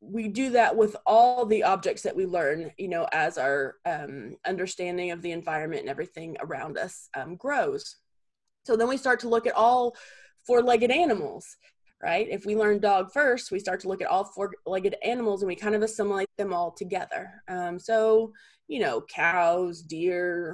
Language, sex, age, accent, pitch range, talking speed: English, female, 20-39, American, 185-230 Hz, 190 wpm